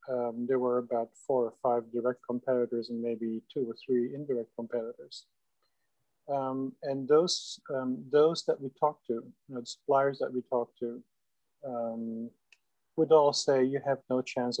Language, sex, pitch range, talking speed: English, male, 120-140 Hz, 170 wpm